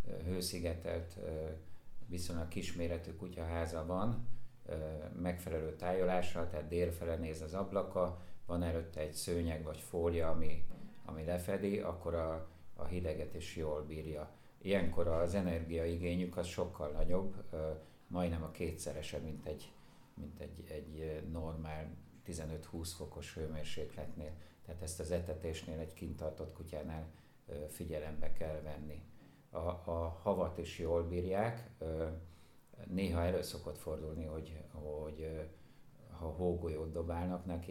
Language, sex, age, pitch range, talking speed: Hungarian, male, 50-69, 80-90 Hz, 115 wpm